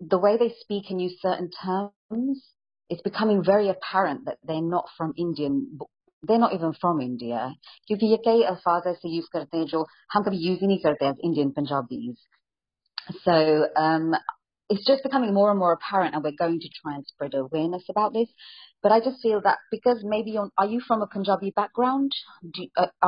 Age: 30-49